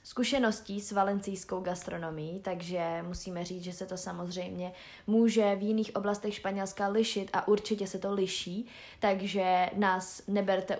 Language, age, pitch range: Czech, 20-39, 180-220 Hz